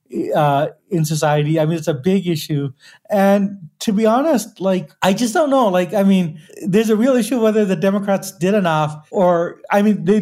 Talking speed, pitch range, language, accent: 200 wpm, 150-185 Hz, English, American